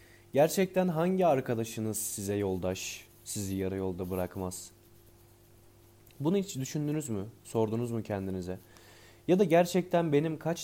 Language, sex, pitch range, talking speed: Turkish, male, 105-120 Hz, 120 wpm